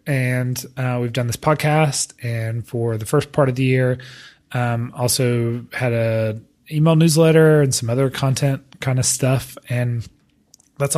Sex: male